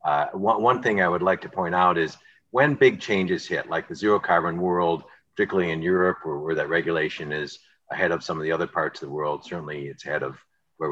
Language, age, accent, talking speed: English, 50-69, American, 235 wpm